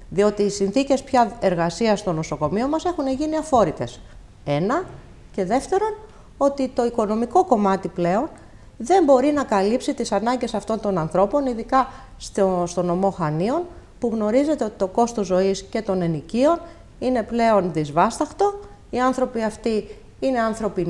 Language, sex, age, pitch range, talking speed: Greek, female, 30-49, 175-235 Hz, 140 wpm